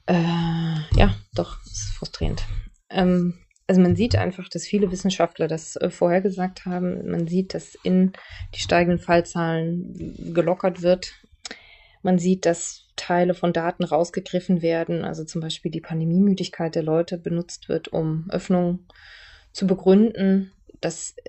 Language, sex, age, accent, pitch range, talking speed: German, female, 20-39, German, 170-185 Hz, 130 wpm